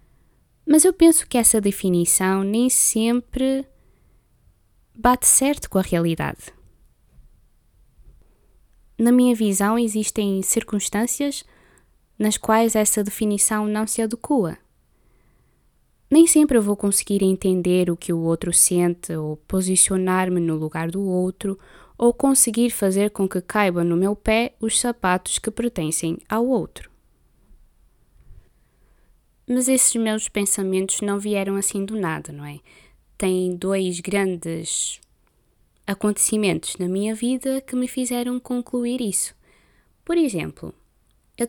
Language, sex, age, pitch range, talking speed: Portuguese, female, 20-39, 180-240 Hz, 120 wpm